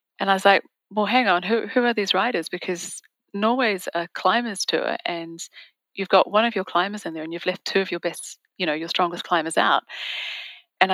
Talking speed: 220 wpm